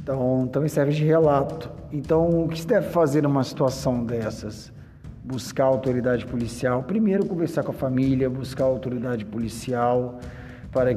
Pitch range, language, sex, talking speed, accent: 120-145 Hz, Portuguese, male, 160 wpm, Brazilian